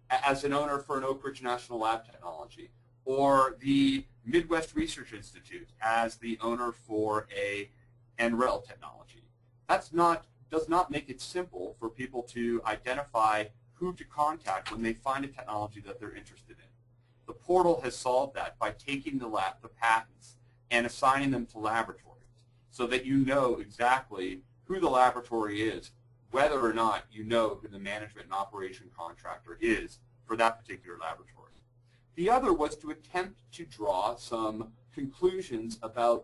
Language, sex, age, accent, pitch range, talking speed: English, male, 40-59, American, 115-140 Hz, 160 wpm